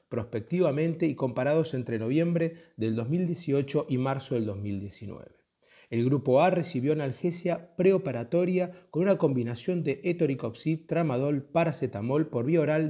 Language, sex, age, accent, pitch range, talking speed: Spanish, male, 30-49, Argentinian, 120-165 Hz, 125 wpm